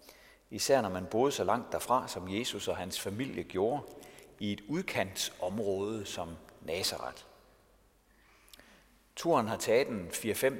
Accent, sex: native, male